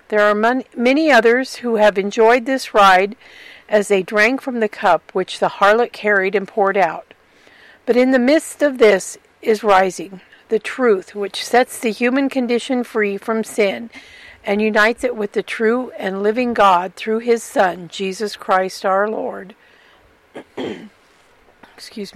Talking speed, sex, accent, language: 155 wpm, female, American, English